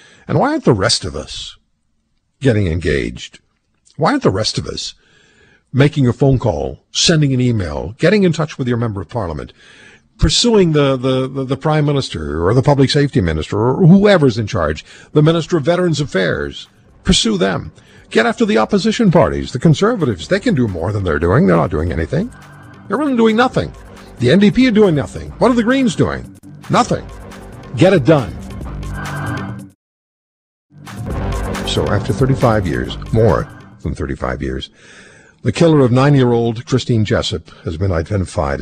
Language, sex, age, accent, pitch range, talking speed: English, male, 50-69, American, 85-145 Hz, 165 wpm